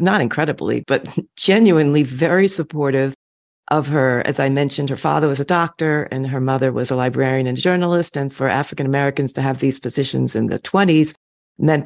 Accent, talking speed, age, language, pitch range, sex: American, 175 wpm, 50-69, English, 135-170 Hz, female